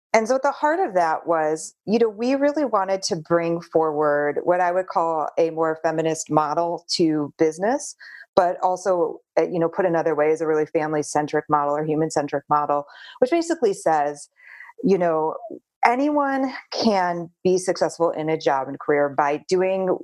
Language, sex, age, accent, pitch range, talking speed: English, female, 30-49, American, 155-200 Hz, 175 wpm